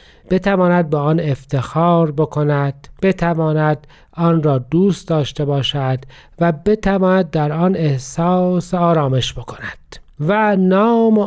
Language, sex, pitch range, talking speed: Persian, male, 140-185 Hz, 105 wpm